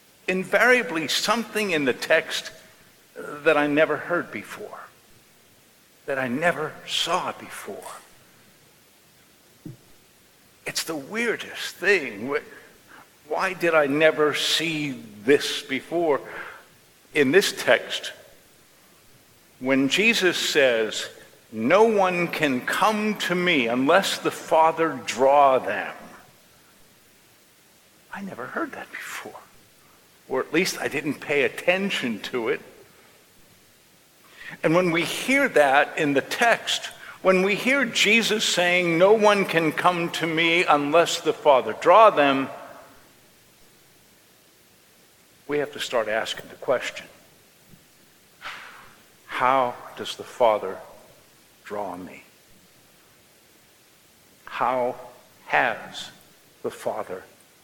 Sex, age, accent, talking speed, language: male, 60-79, American, 100 wpm, English